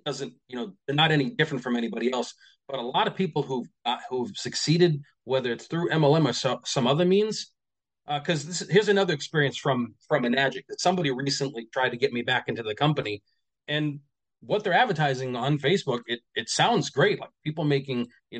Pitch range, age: 125-175 Hz, 30-49